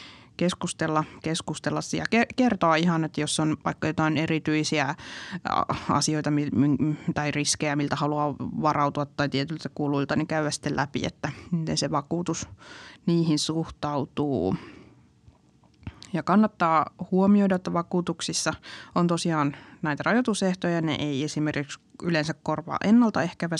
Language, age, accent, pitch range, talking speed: Finnish, 20-39, native, 150-170 Hz, 115 wpm